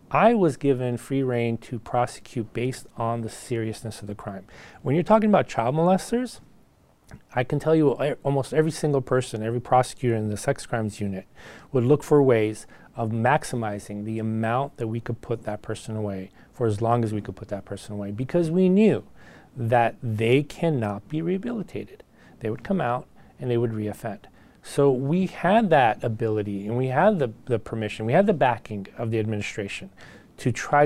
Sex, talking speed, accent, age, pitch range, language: male, 185 wpm, American, 40-59, 110-145 Hz, English